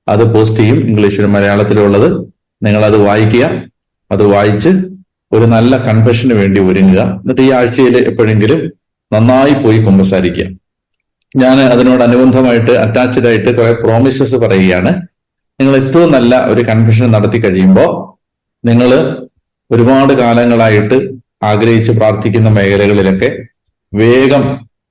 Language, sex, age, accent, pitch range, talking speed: Malayalam, male, 40-59, native, 105-125 Hz, 105 wpm